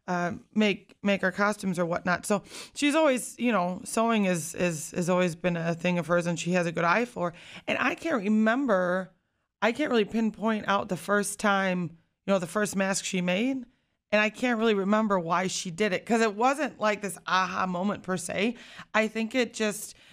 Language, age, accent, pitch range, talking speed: English, 30-49, American, 180-210 Hz, 210 wpm